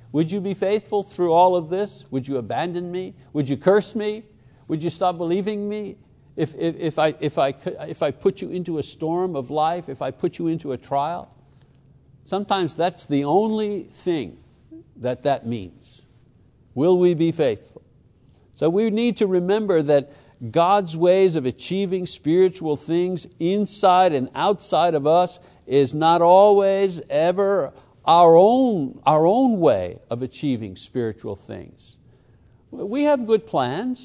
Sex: male